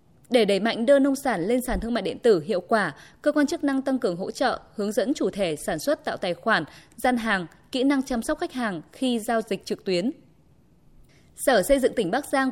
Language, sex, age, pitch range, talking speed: Vietnamese, female, 20-39, 205-265 Hz, 240 wpm